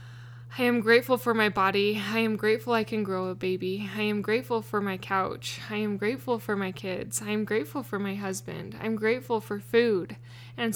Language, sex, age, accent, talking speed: English, female, 10-29, American, 210 wpm